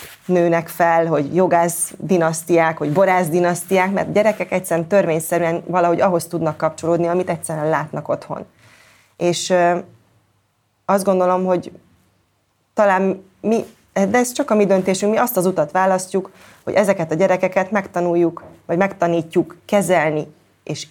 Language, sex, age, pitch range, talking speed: Hungarian, female, 20-39, 160-185 Hz, 140 wpm